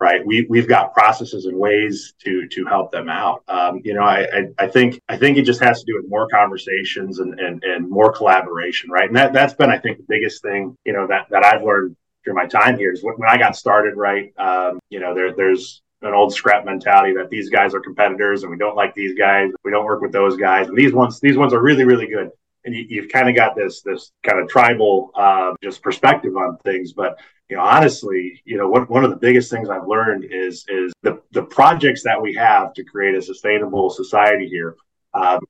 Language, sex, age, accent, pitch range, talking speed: English, male, 30-49, American, 95-120 Hz, 230 wpm